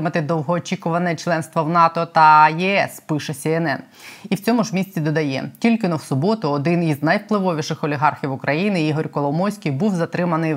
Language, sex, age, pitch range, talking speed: Ukrainian, female, 20-39, 150-175 Hz, 160 wpm